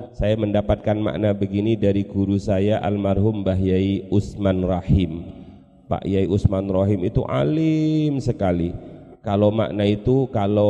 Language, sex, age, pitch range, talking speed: Indonesian, male, 30-49, 100-120 Hz, 125 wpm